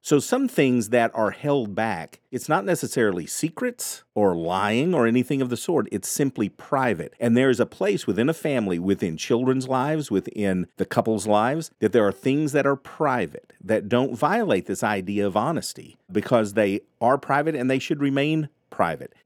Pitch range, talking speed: 95-130 Hz, 185 wpm